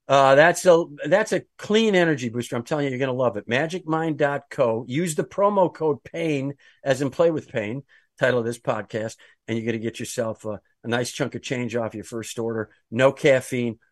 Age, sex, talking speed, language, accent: 50-69, male, 210 wpm, English, American